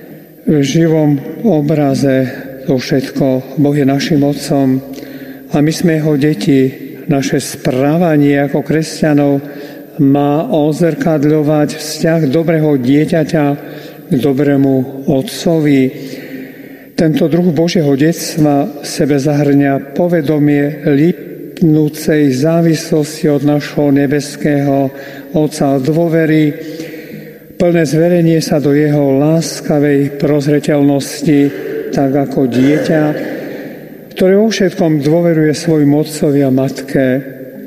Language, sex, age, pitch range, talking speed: Slovak, male, 50-69, 140-160 Hz, 95 wpm